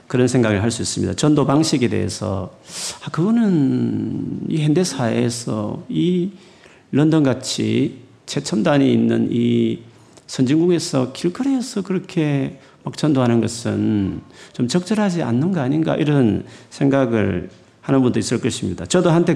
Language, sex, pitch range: Korean, male, 110-165 Hz